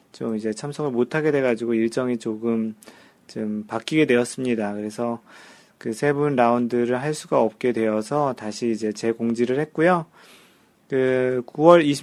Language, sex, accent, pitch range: Korean, male, native, 115-140 Hz